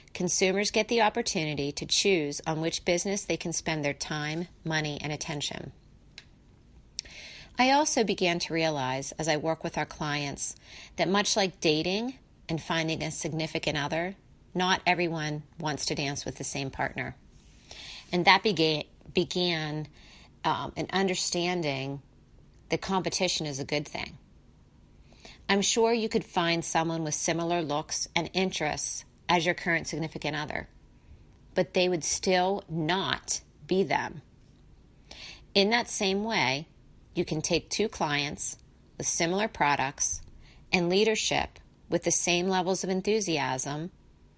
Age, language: 40-59, English